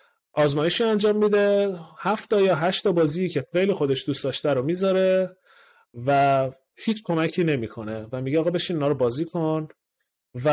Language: Persian